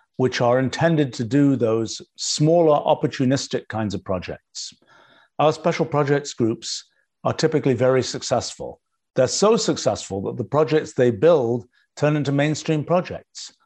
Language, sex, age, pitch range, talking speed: English, male, 50-69, 120-150 Hz, 135 wpm